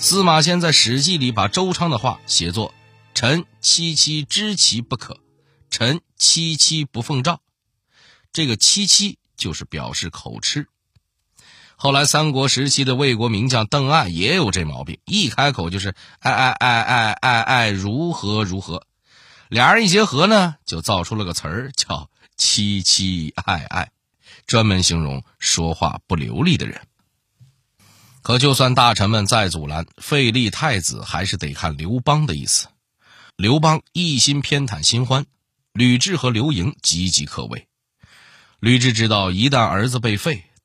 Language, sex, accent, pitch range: Chinese, male, native, 95-140 Hz